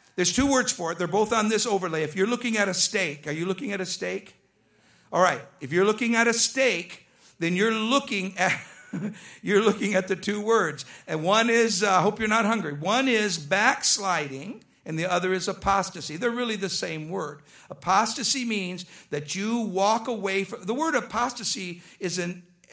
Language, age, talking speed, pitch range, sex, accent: English, 50-69, 195 wpm, 170-245 Hz, male, American